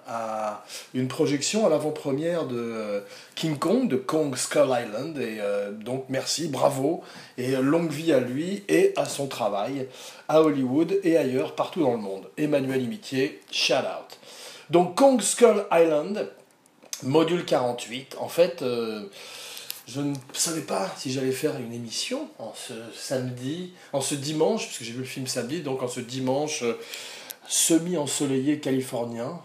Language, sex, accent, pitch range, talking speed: French, male, French, 125-170 Hz, 150 wpm